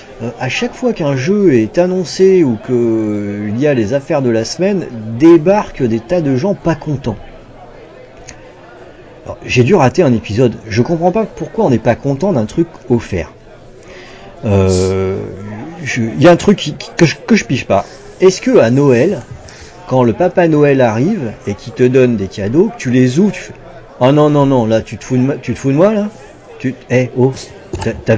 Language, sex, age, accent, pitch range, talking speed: French, male, 40-59, French, 120-175 Hz, 200 wpm